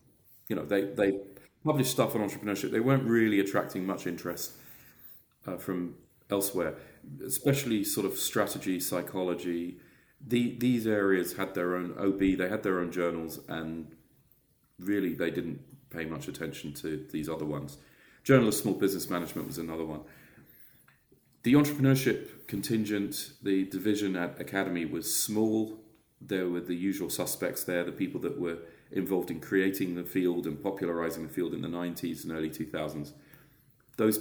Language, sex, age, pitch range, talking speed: English, male, 30-49, 90-115 Hz, 155 wpm